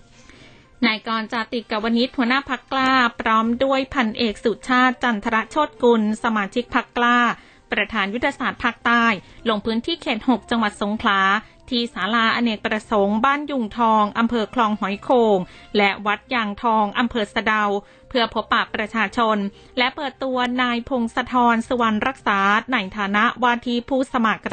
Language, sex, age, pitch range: Thai, female, 20-39, 215-255 Hz